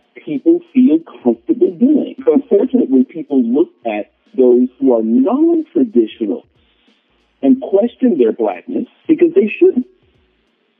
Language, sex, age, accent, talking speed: English, male, 50-69, American, 105 wpm